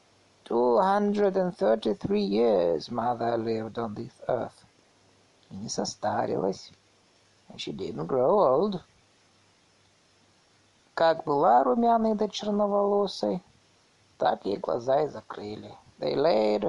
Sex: male